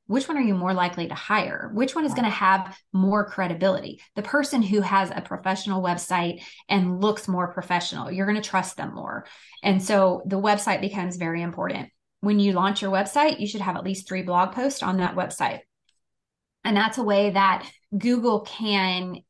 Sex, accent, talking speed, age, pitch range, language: female, American, 195 wpm, 20-39, 185-215 Hz, English